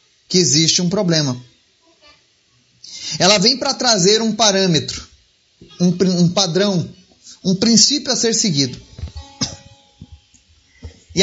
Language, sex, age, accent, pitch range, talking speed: Portuguese, male, 30-49, Brazilian, 145-215 Hz, 100 wpm